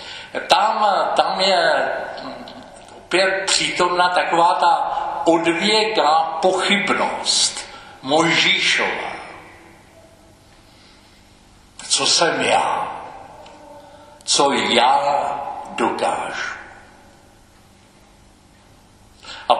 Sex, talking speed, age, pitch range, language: male, 50 wpm, 60-79, 145-215 Hz, Czech